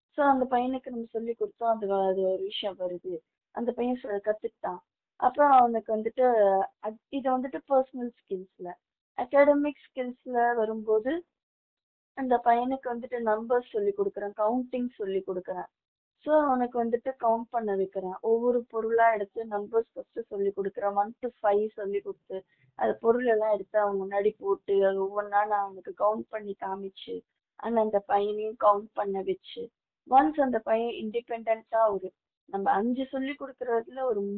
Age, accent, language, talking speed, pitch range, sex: 20-39, native, Tamil, 120 wpm, 200-250 Hz, female